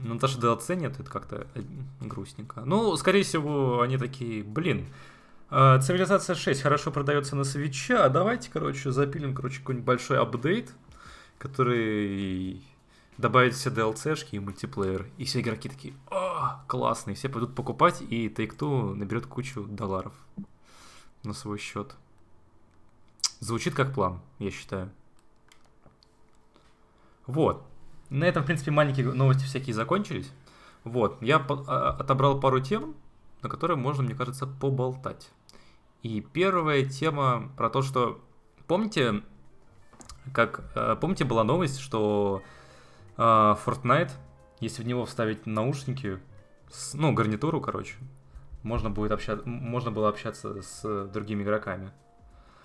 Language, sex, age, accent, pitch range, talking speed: Russian, male, 20-39, native, 105-140 Hz, 120 wpm